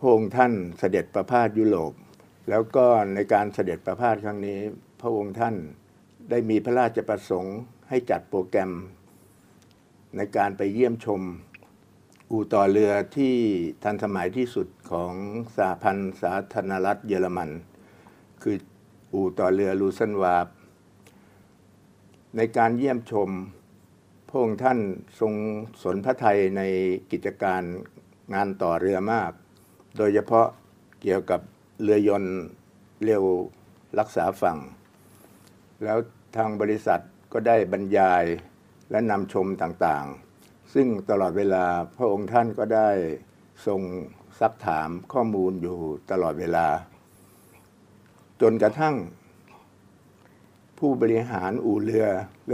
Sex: male